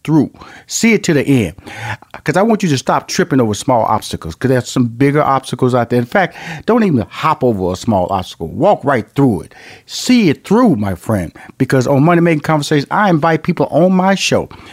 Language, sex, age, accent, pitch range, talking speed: English, male, 40-59, American, 125-170 Hz, 210 wpm